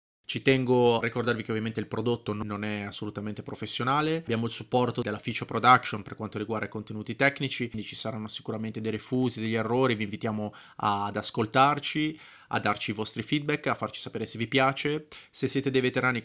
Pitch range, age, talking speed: 110-125 Hz, 20-39, 190 wpm